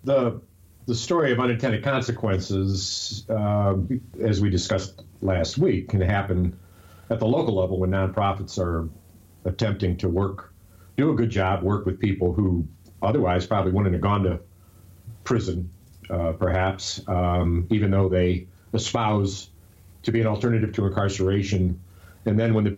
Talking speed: 150 wpm